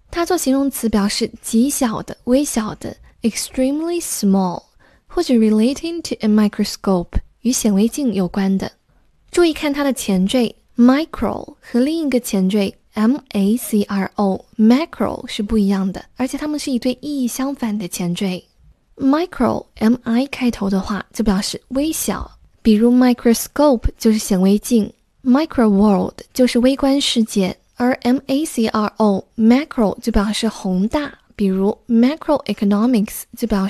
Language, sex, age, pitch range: Chinese, female, 10-29, 205-260 Hz